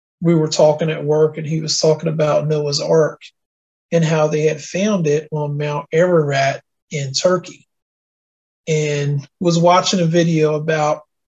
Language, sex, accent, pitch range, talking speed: English, male, American, 150-175 Hz, 155 wpm